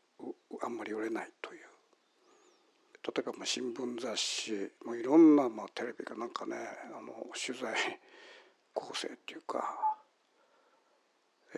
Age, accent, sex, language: 60-79, native, male, Japanese